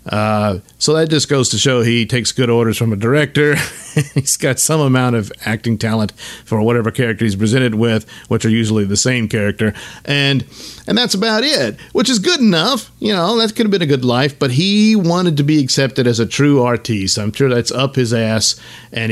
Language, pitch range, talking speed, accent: English, 110-140 Hz, 215 wpm, American